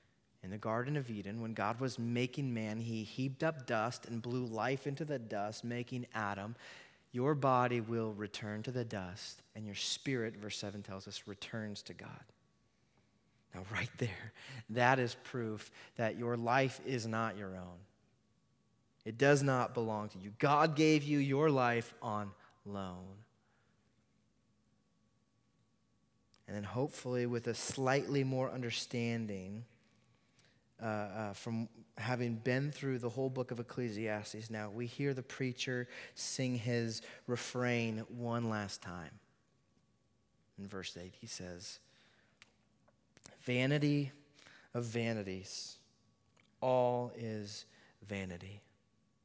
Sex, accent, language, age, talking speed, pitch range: male, American, English, 30-49, 130 wpm, 105-135 Hz